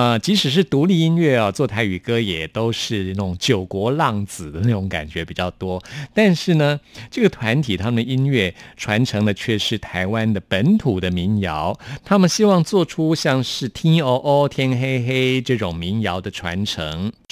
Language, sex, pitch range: Chinese, male, 100-135 Hz